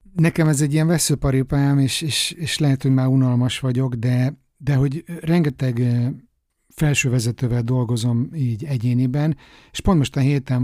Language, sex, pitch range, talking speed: Hungarian, male, 120-150 Hz, 145 wpm